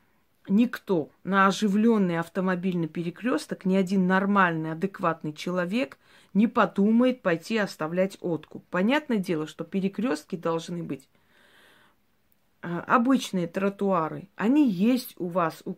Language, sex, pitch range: Russian, female, 170-210 Hz